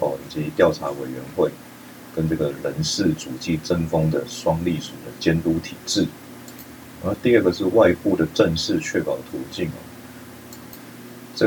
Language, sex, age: Chinese, male, 30-49